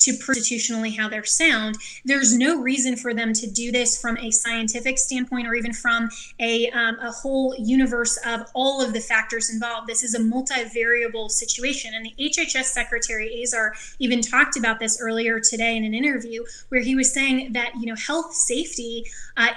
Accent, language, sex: American, English, female